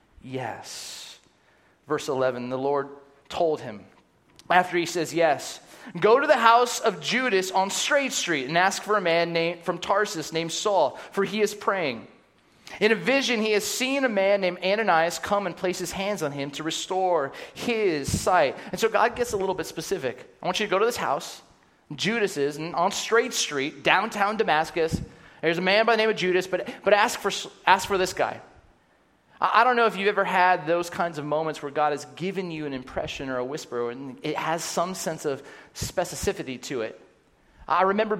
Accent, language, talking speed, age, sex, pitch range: American, English, 200 wpm, 30-49, male, 155-205 Hz